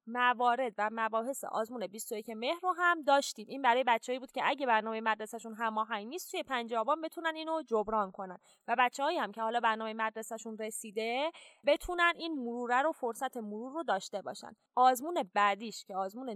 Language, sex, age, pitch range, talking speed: Persian, female, 20-39, 220-285 Hz, 175 wpm